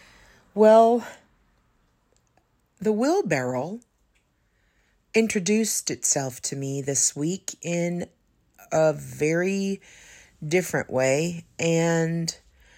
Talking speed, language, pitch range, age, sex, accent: 70 wpm, English, 145-180 Hz, 40-59, female, American